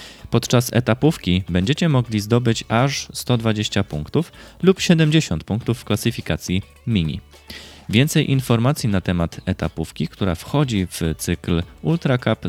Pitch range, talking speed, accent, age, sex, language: 90-130 Hz, 120 wpm, native, 20-39, male, Polish